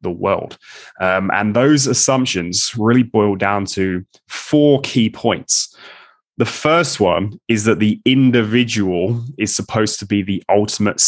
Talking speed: 140 wpm